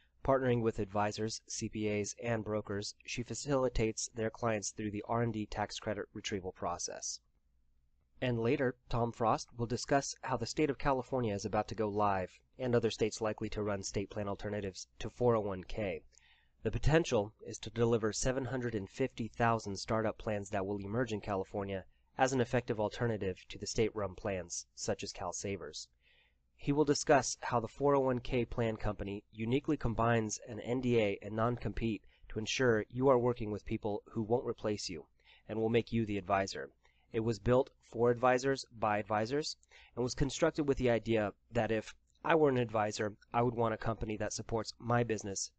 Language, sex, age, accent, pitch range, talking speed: English, male, 30-49, American, 105-120 Hz, 170 wpm